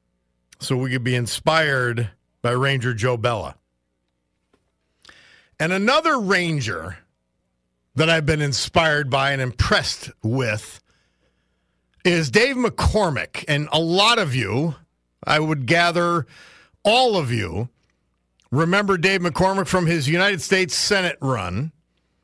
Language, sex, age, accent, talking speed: English, male, 50-69, American, 115 wpm